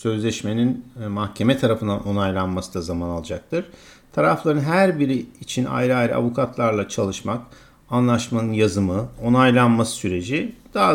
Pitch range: 105-130 Hz